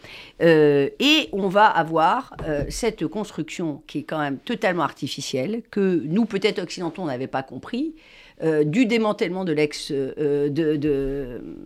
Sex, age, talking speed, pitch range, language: female, 50-69, 155 wpm, 150-240 Hz, French